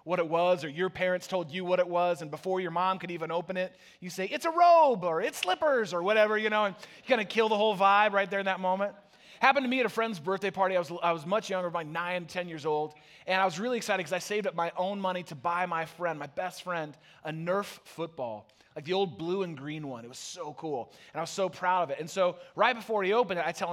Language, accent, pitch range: English, American, 165-225 Hz